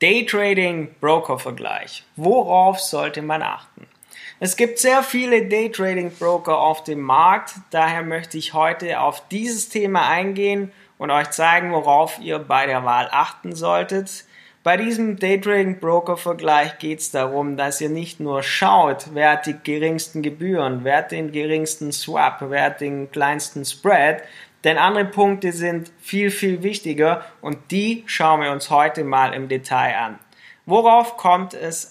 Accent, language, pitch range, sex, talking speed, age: German, German, 145-180 Hz, male, 160 wpm, 20-39